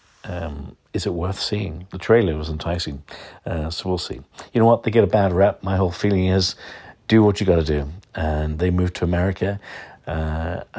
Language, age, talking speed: English, 50-69, 205 wpm